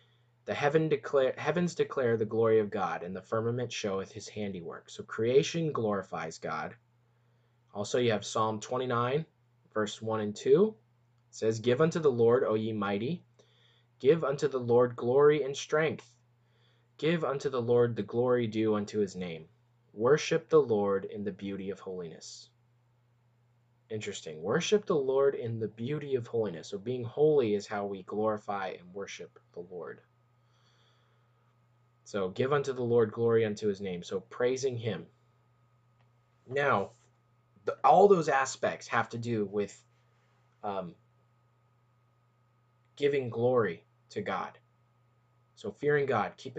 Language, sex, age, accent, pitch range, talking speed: English, male, 20-39, American, 110-125 Hz, 140 wpm